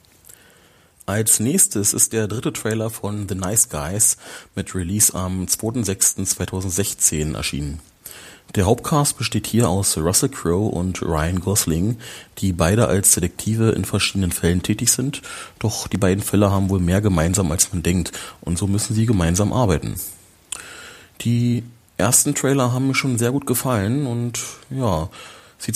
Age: 30-49